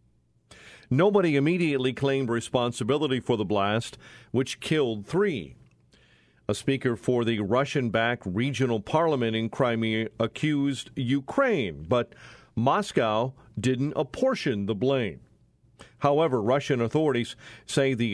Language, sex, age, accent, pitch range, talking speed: English, male, 50-69, American, 115-145 Hz, 105 wpm